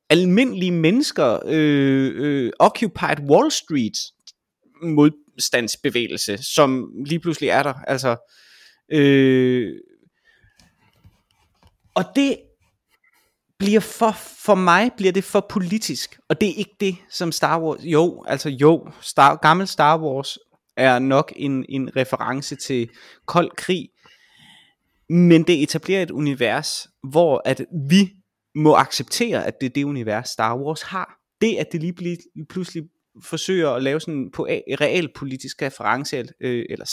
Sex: male